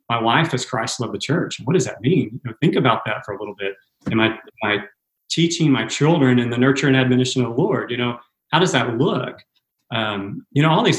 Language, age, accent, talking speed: English, 30-49, American, 250 wpm